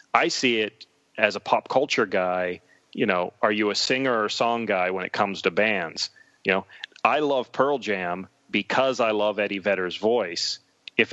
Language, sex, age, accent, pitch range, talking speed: English, male, 30-49, American, 95-115 Hz, 190 wpm